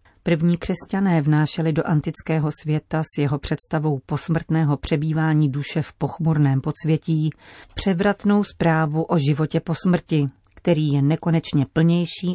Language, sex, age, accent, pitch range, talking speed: Czech, female, 40-59, native, 150-180 Hz, 120 wpm